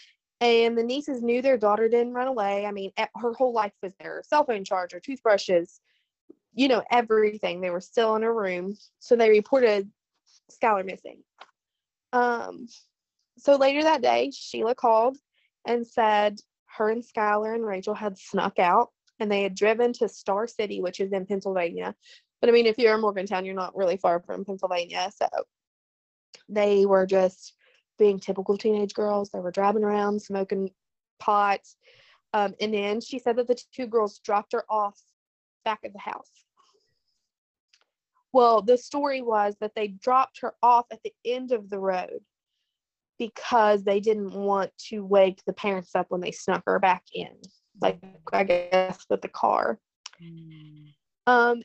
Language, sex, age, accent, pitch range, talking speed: English, female, 20-39, American, 195-245 Hz, 165 wpm